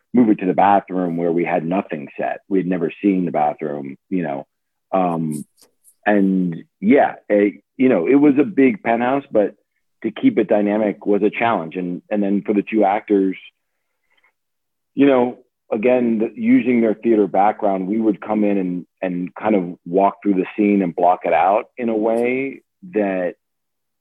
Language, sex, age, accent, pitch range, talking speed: English, male, 40-59, American, 95-110 Hz, 175 wpm